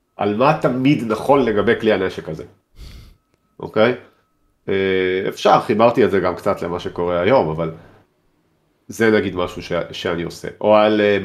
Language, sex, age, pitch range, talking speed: Hebrew, male, 40-59, 95-125 Hz, 140 wpm